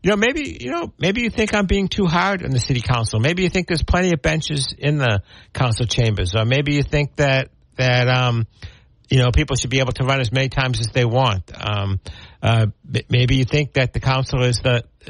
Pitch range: 105-135 Hz